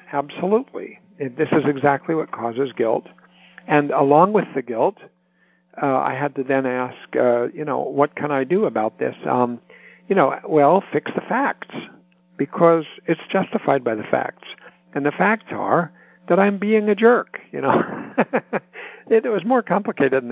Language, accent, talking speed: English, American, 165 wpm